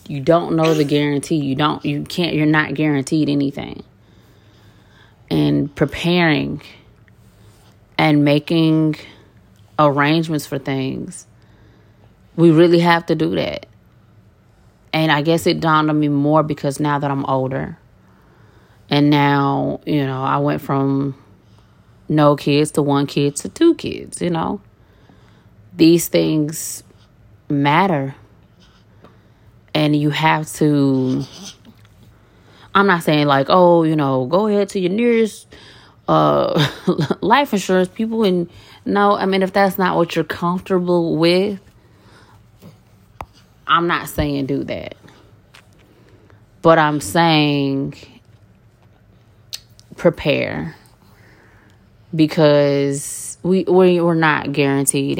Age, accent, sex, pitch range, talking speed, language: 30-49, American, female, 110-160 Hz, 110 wpm, English